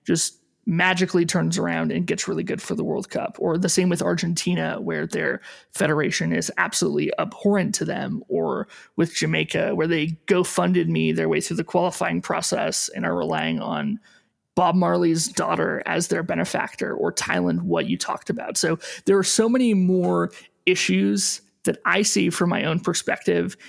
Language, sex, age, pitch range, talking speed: English, male, 20-39, 170-200 Hz, 170 wpm